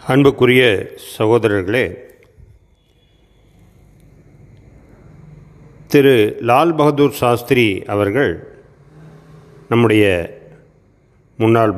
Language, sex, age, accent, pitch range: Tamil, male, 40-59, native, 110-150 Hz